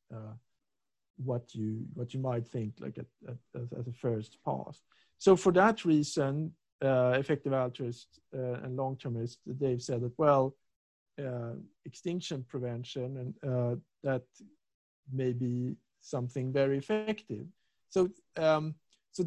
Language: English